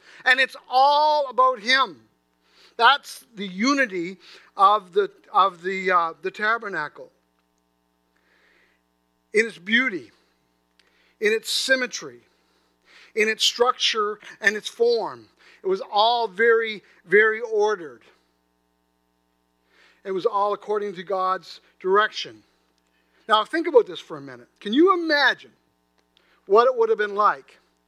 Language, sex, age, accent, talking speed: English, male, 50-69, American, 120 wpm